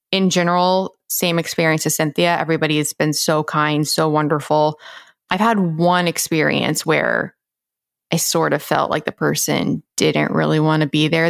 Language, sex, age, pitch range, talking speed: English, female, 20-39, 155-200 Hz, 160 wpm